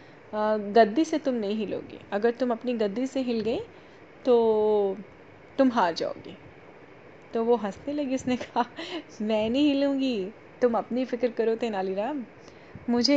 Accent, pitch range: native, 205-245 Hz